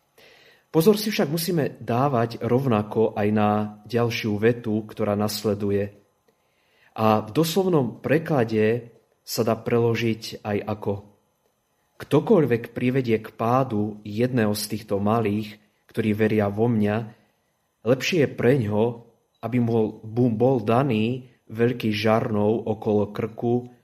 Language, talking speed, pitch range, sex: Slovak, 115 wpm, 105-120 Hz, male